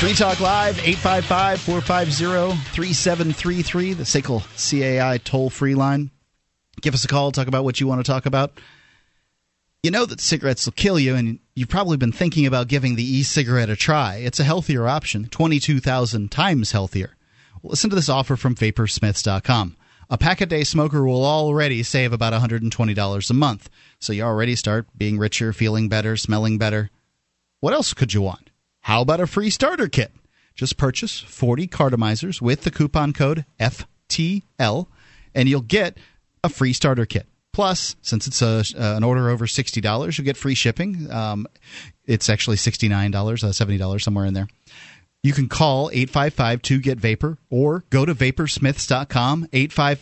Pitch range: 115-150 Hz